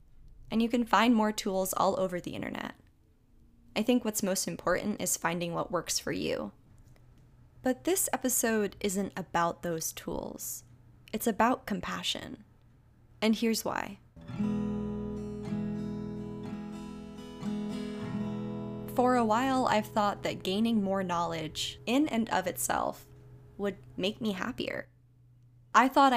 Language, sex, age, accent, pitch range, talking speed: English, female, 10-29, American, 170-215 Hz, 120 wpm